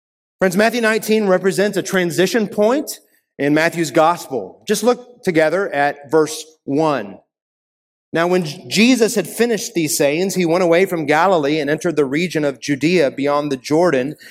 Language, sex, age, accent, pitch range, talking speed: English, male, 30-49, American, 145-195 Hz, 155 wpm